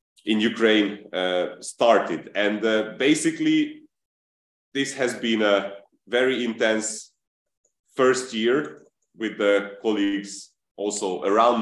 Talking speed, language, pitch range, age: 105 wpm, Ukrainian, 110-130 Hz, 30-49